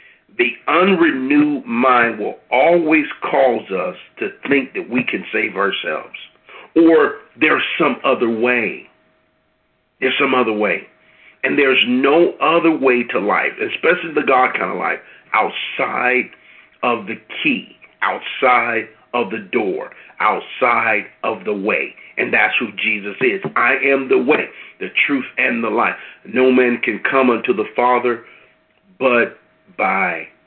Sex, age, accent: male, 50-69, American